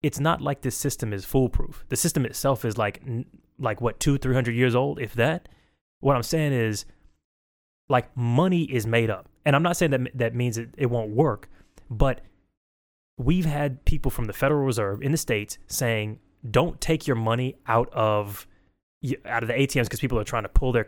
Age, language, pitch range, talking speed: 20-39, English, 105-135 Hz, 200 wpm